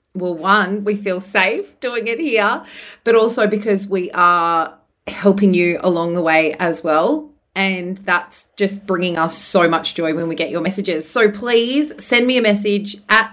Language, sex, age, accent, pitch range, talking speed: English, female, 30-49, Australian, 185-220 Hz, 180 wpm